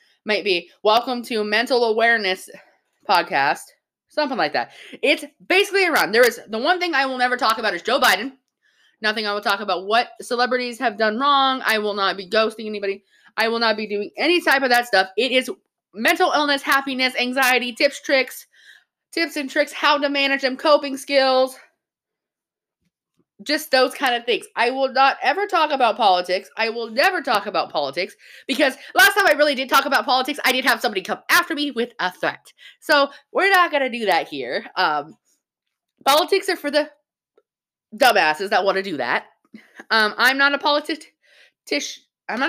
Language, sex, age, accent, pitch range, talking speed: English, female, 20-39, American, 220-300 Hz, 180 wpm